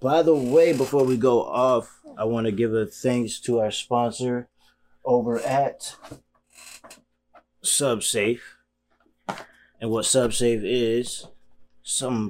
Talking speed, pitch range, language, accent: 110 wpm, 100-115 Hz, English, American